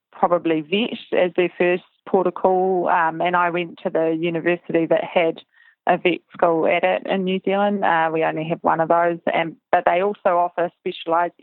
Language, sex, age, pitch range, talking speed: English, female, 20-39, 170-195 Hz, 200 wpm